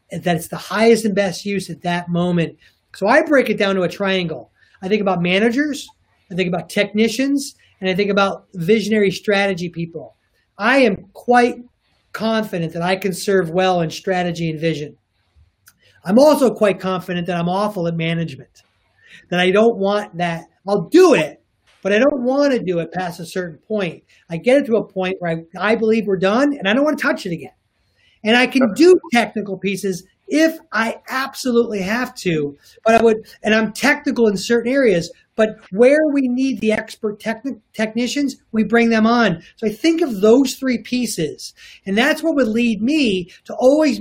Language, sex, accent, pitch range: English, male, American, 185-245 Hz